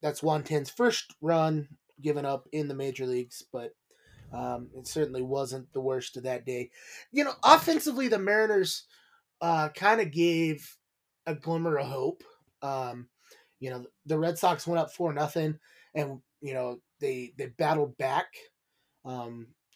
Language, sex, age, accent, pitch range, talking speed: English, male, 20-39, American, 135-175 Hz, 160 wpm